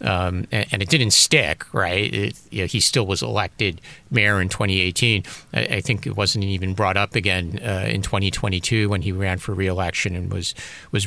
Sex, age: male, 40-59